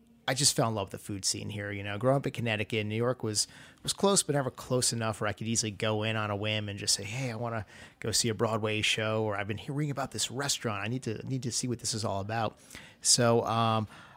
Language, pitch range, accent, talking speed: English, 105-125 Hz, American, 280 wpm